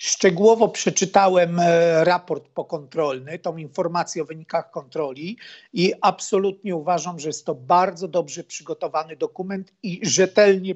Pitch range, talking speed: 160-190 Hz, 115 wpm